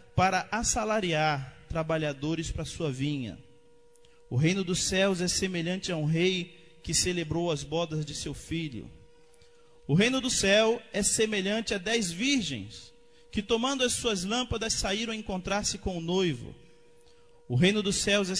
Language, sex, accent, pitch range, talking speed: Portuguese, male, Brazilian, 155-240 Hz, 155 wpm